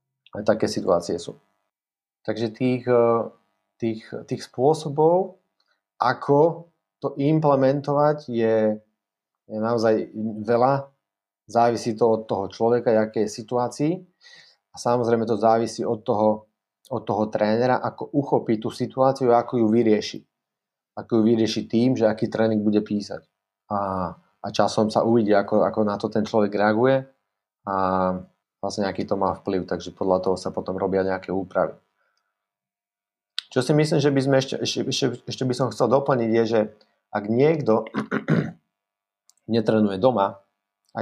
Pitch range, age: 105-125 Hz, 30-49